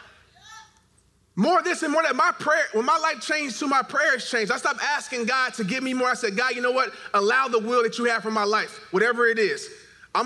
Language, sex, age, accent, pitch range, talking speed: English, male, 30-49, American, 200-265 Hz, 250 wpm